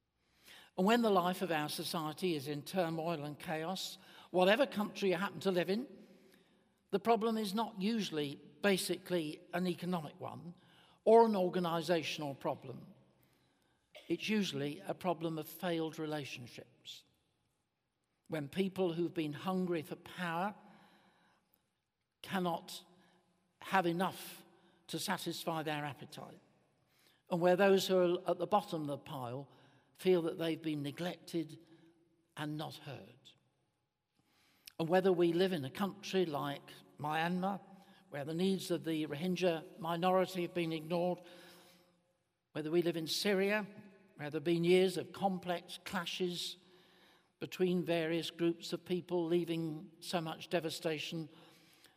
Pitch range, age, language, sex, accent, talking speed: 165-185 Hz, 60-79, English, male, British, 130 wpm